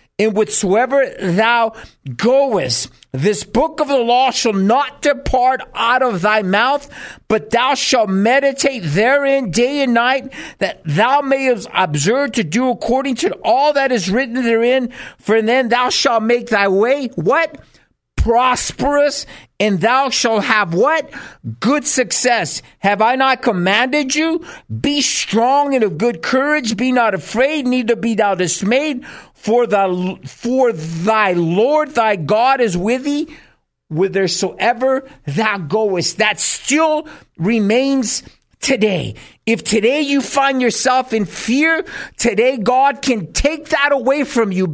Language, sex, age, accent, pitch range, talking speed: English, male, 50-69, American, 210-275 Hz, 140 wpm